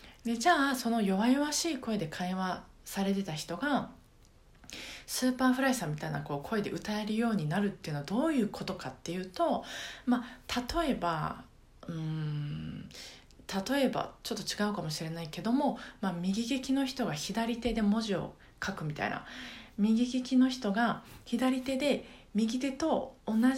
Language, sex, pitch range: Japanese, female, 180-245 Hz